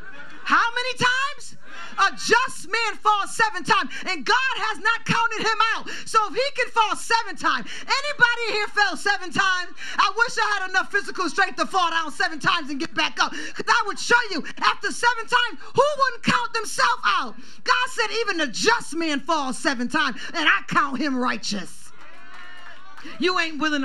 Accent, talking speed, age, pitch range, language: American, 185 wpm, 40-59, 310-410 Hz, English